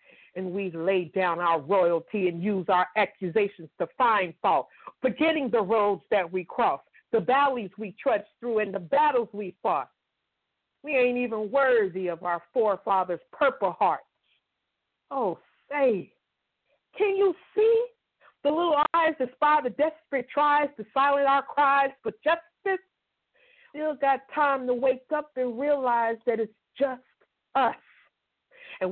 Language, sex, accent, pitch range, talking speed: English, female, American, 200-280 Hz, 145 wpm